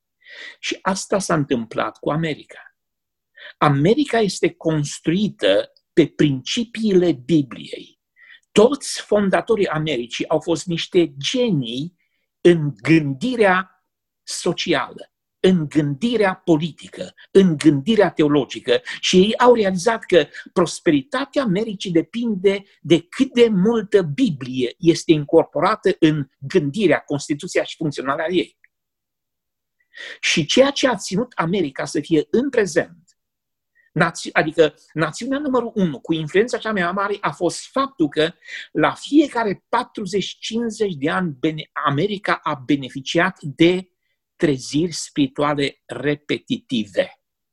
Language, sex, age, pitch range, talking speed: Romanian, male, 50-69, 155-235 Hz, 105 wpm